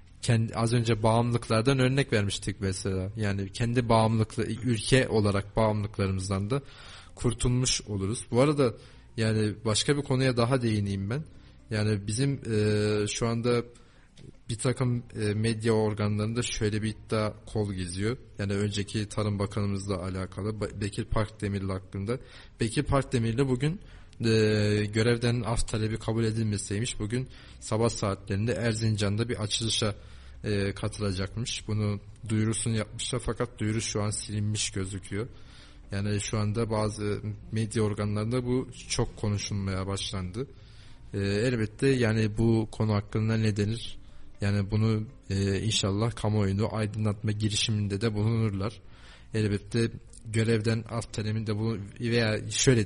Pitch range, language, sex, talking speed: 105-115 Hz, Turkish, male, 125 wpm